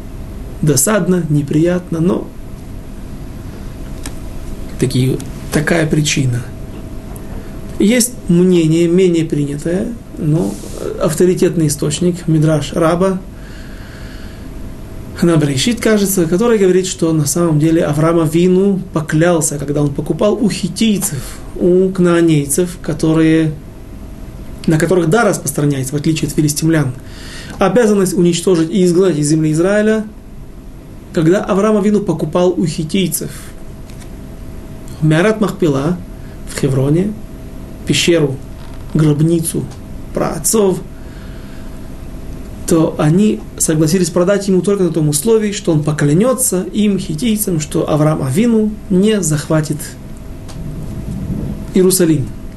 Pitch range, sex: 150-185 Hz, male